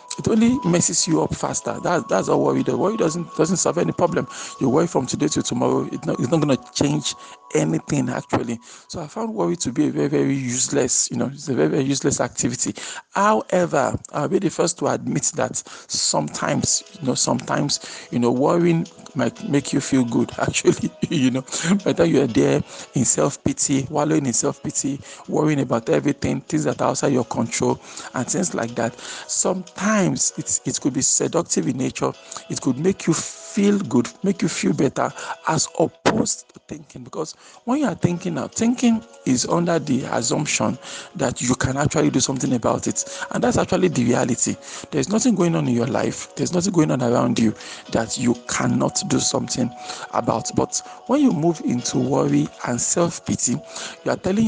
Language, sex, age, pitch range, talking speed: English, male, 50-69, 125-175 Hz, 185 wpm